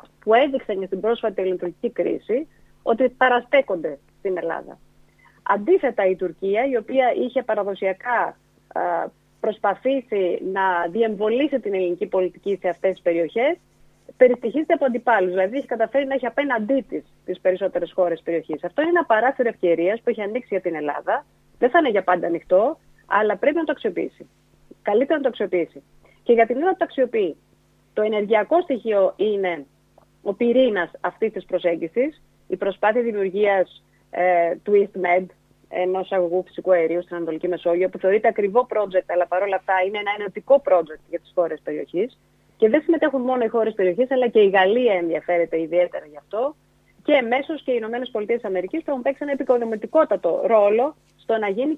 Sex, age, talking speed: female, 30-49, 165 wpm